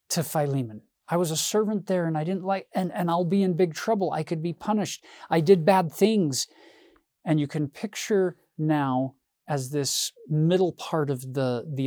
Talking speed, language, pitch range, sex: 190 wpm, English, 130-170 Hz, male